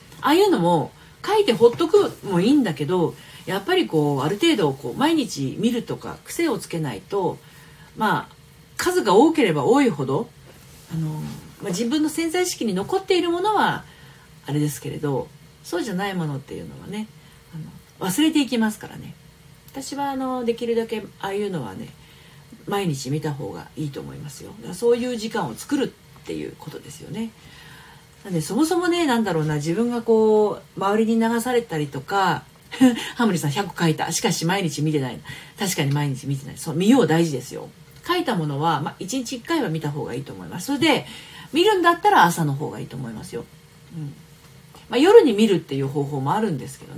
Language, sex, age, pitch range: Japanese, female, 40-59, 155-255 Hz